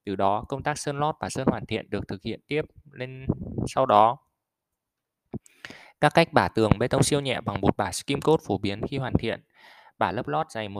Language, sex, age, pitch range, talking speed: Vietnamese, male, 20-39, 105-135 Hz, 215 wpm